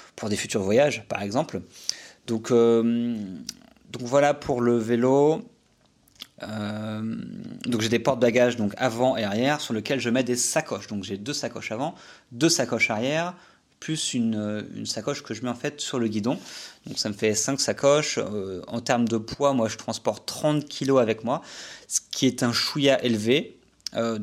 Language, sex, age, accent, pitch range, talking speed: French, male, 30-49, French, 110-130 Hz, 185 wpm